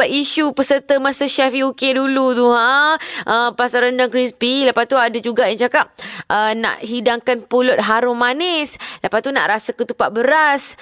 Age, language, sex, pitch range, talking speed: 20-39, Malay, female, 220-260 Hz, 165 wpm